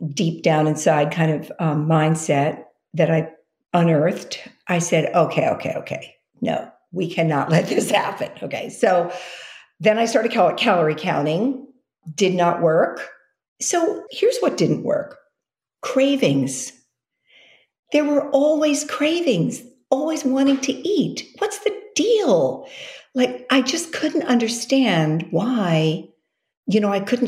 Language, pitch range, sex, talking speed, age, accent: English, 160-250 Hz, female, 130 wpm, 50-69, American